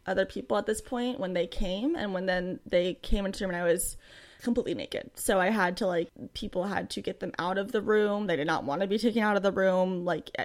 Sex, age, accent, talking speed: female, 20-39, American, 265 wpm